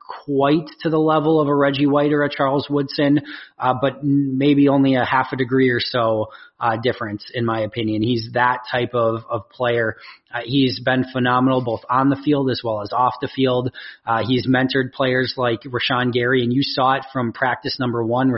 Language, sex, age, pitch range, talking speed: English, male, 30-49, 120-135 Hz, 200 wpm